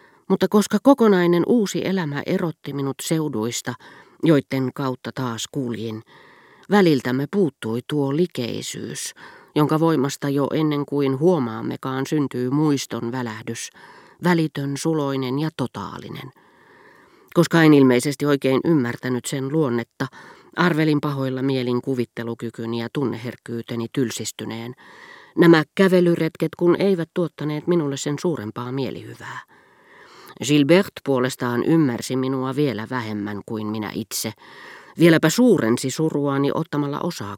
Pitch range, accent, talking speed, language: 125-170 Hz, native, 105 wpm, Finnish